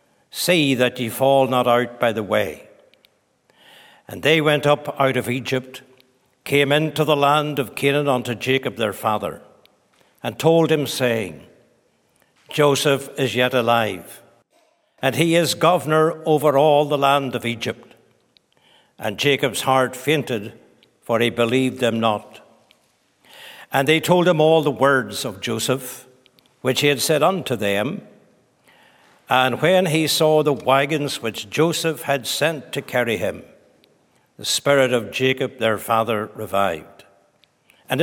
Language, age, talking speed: English, 60-79, 140 wpm